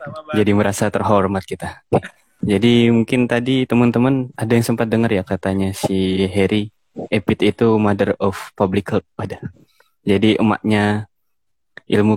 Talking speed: 125 wpm